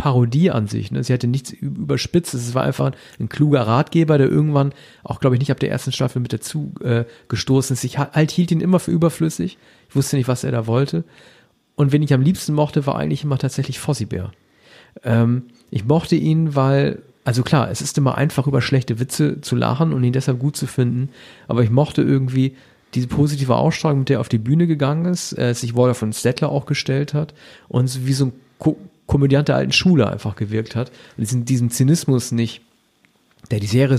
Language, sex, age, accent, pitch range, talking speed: German, male, 40-59, German, 120-145 Hz, 210 wpm